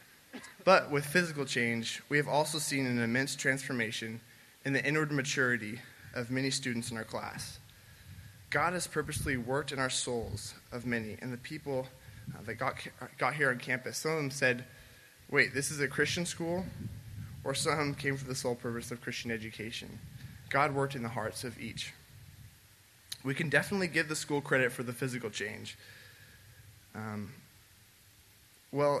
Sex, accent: male, American